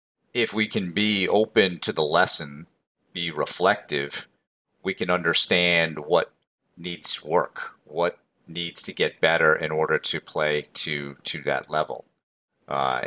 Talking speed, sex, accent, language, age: 140 wpm, male, American, English, 40-59